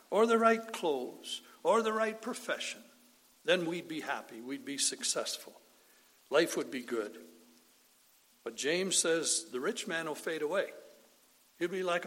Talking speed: 155 wpm